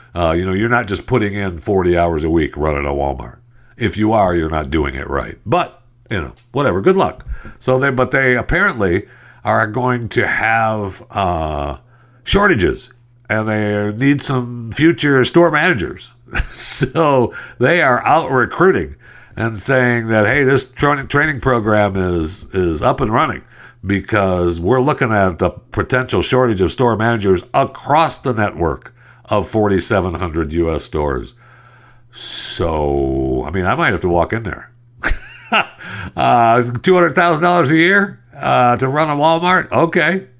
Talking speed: 150 wpm